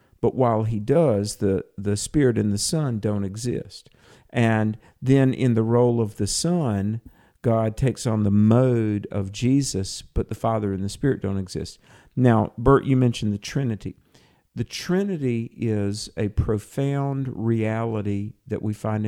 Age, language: 50-69, English